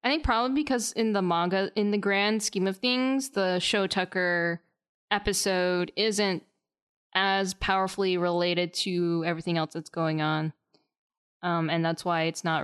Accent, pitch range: American, 170-210 Hz